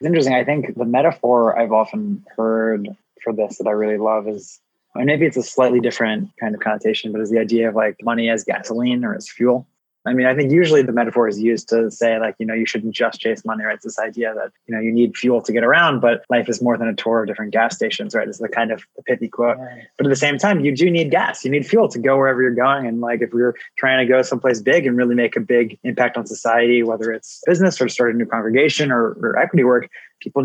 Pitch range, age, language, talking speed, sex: 115-130 Hz, 20-39, English, 270 wpm, male